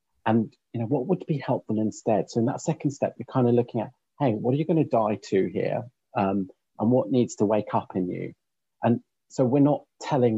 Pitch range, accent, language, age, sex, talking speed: 105-125 Hz, British, English, 40-59, male, 235 wpm